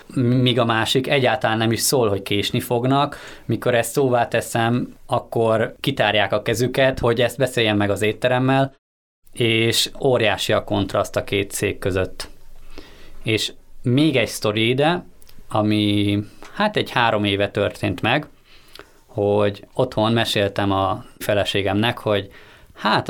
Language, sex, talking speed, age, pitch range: Hungarian, male, 130 wpm, 20-39, 105-125 Hz